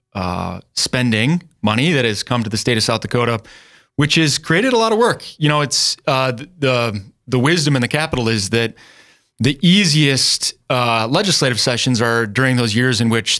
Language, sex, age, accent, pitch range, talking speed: English, male, 30-49, American, 110-135 Hz, 190 wpm